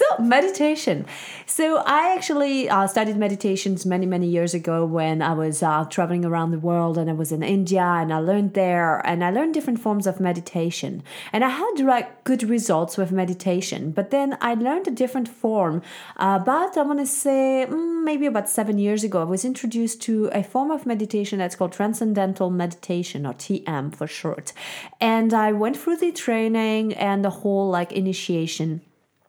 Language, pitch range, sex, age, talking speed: English, 185-260 Hz, female, 30-49, 180 wpm